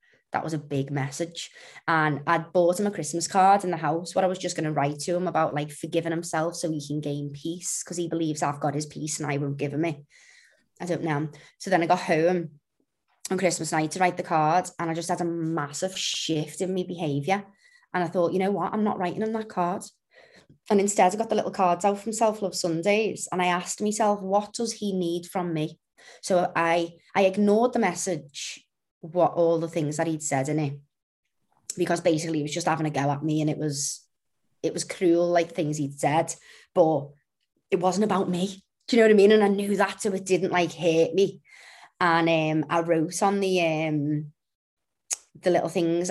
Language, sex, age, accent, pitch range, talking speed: English, female, 20-39, British, 155-190 Hz, 225 wpm